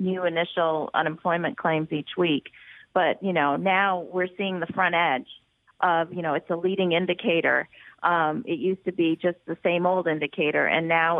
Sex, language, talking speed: female, English, 180 wpm